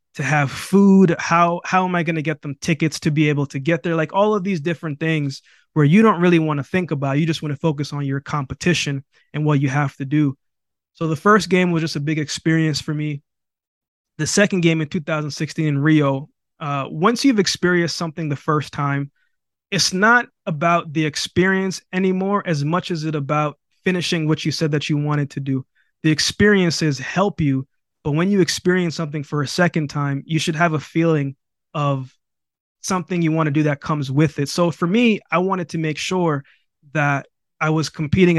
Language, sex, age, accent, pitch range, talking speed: English, male, 20-39, American, 145-175 Hz, 205 wpm